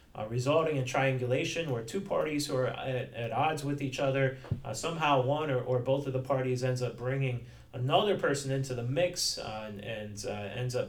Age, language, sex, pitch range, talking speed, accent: 30-49, English, male, 115-135 Hz, 210 wpm, American